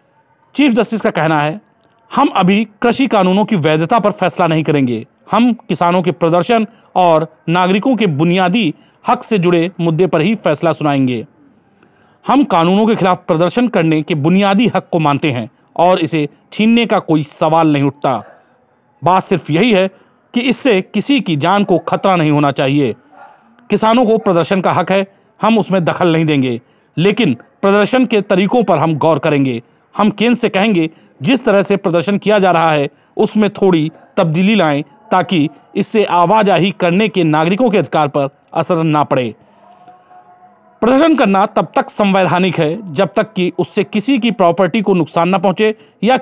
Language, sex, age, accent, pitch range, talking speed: Hindi, male, 40-59, native, 165-215 Hz, 170 wpm